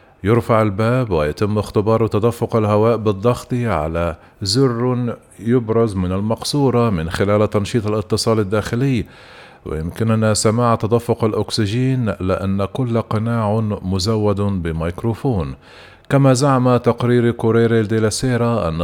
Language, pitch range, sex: Arabic, 100-120 Hz, male